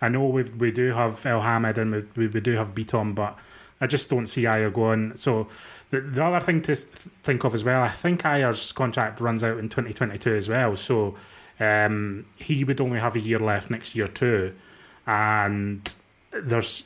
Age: 20-39